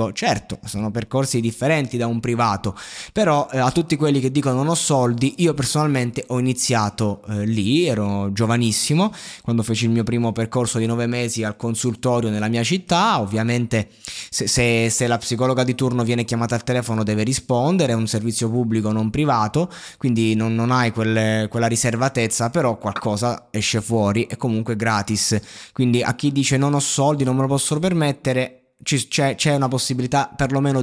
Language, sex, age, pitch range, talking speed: Italian, male, 20-39, 115-140 Hz, 170 wpm